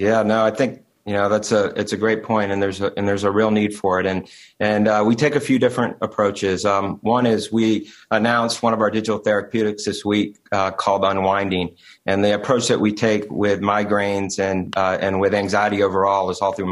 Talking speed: 225 wpm